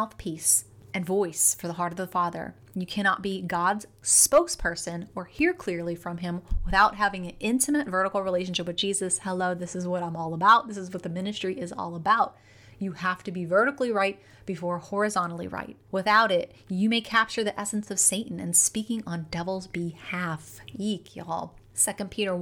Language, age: English, 30-49